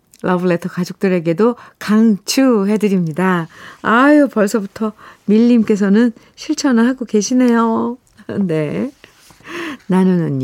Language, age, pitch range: Korean, 50-69, 175-245 Hz